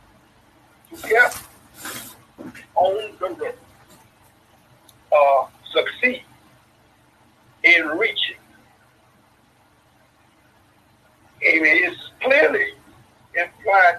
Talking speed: 50 wpm